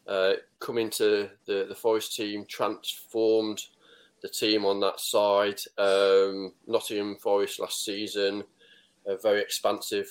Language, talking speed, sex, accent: English, 125 wpm, male, British